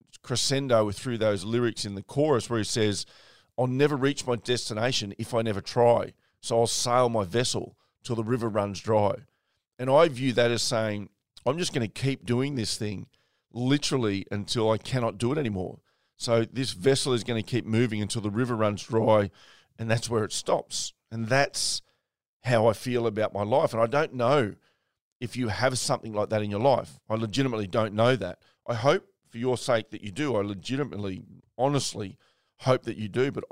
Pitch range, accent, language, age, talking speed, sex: 110-130 Hz, Australian, English, 40-59, 195 wpm, male